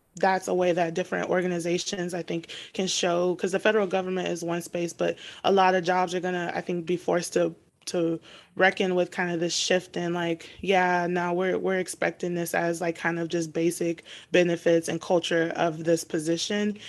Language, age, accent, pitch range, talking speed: English, 20-39, American, 165-180 Hz, 205 wpm